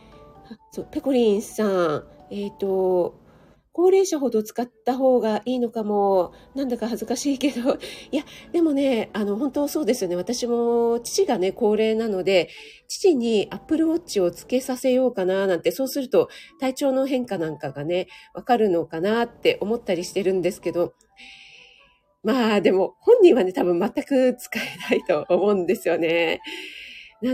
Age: 40-59